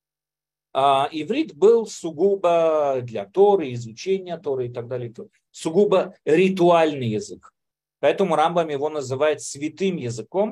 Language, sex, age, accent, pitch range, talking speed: Russian, male, 40-59, native, 125-170 Hz, 110 wpm